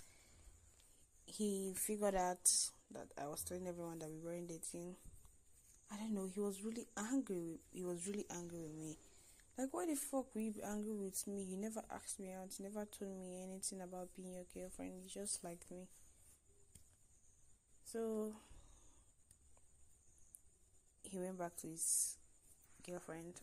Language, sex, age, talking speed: English, female, 10-29, 155 wpm